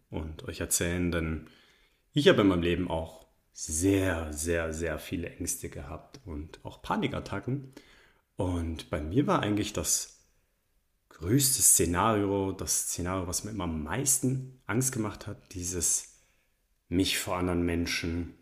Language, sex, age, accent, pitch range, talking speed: German, male, 30-49, German, 85-105 Hz, 135 wpm